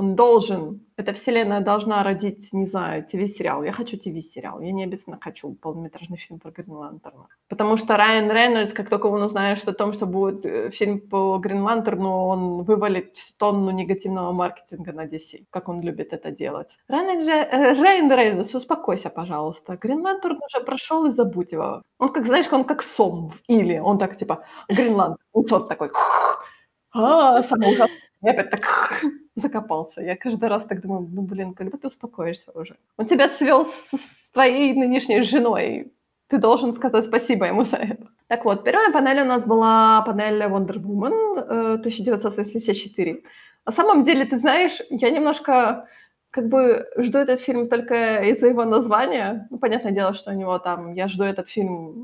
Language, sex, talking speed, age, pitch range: Ukrainian, female, 165 wpm, 20-39, 190-255 Hz